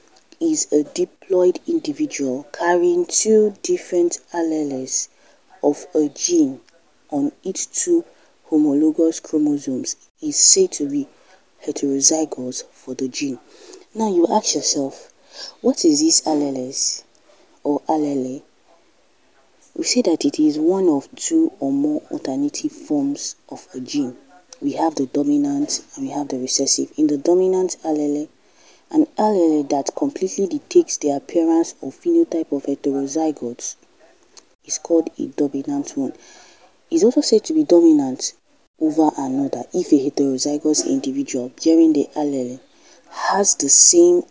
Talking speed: 130 wpm